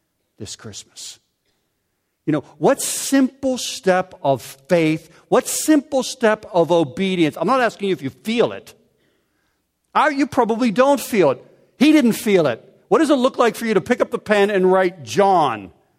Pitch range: 110-155 Hz